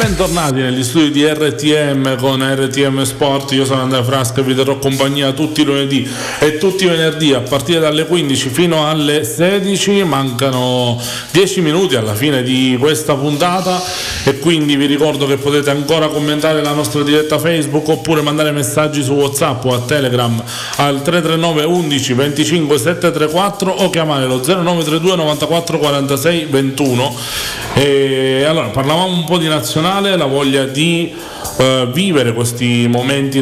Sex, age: male, 40-59